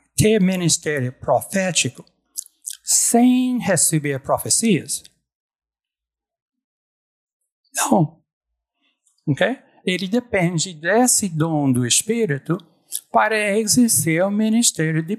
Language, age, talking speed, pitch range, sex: Portuguese, 60-79, 70 wpm, 150-220 Hz, male